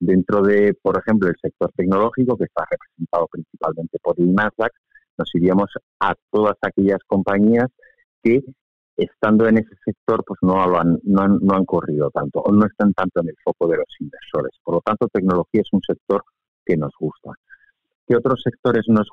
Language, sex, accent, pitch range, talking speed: Spanish, male, Spanish, 85-115 Hz, 180 wpm